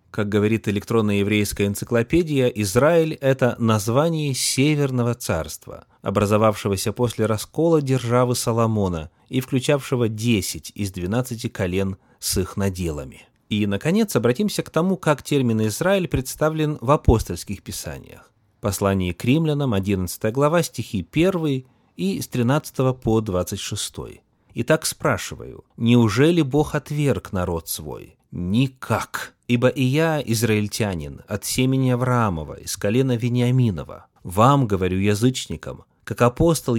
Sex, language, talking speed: male, Russian, 115 wpm